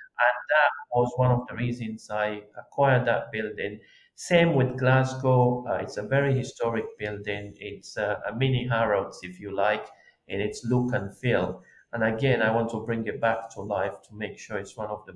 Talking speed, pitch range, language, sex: 200 wpm, 105-125 Hz, English, male